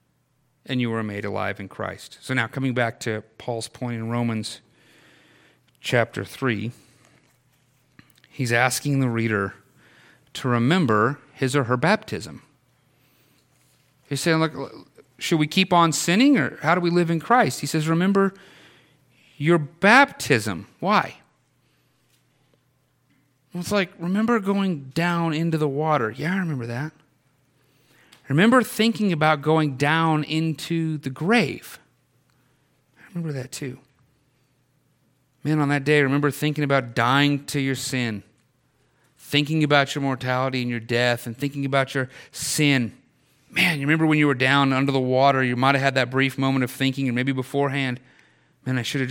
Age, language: 40-59, English